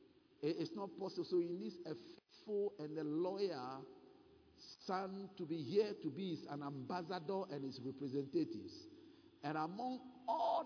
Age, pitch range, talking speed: 50-69, 150-215 Hz, 140 wpm